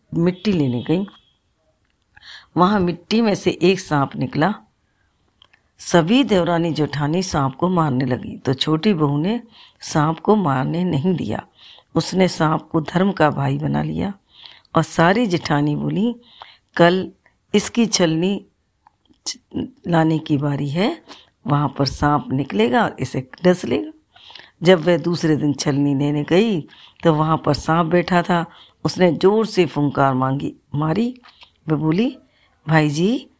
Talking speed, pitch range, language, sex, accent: 135 wpm, 150-200 Hz, Hindi, female, native